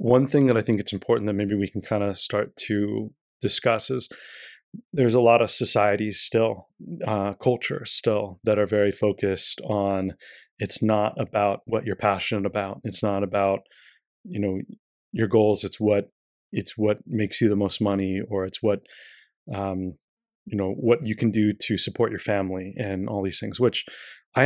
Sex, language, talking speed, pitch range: male, English, 180 wpm, 100-115 Hz